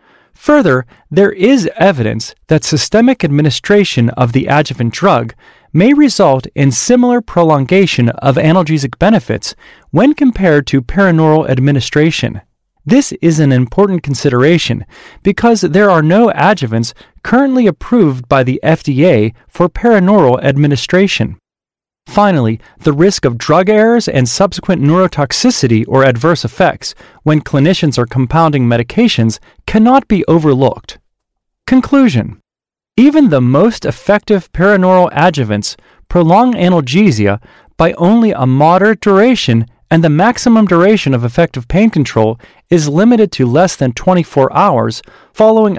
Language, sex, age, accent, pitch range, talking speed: English, male, 30-49, American, 135-205 Hz, 120 wpm